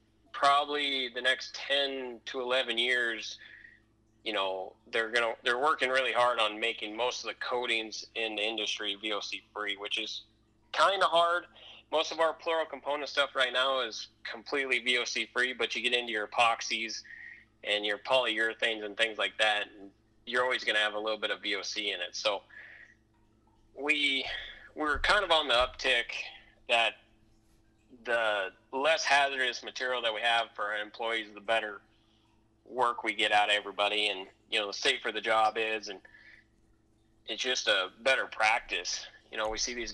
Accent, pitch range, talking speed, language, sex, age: American, 110-125 Hz, 175 wpm, English, male, 30-49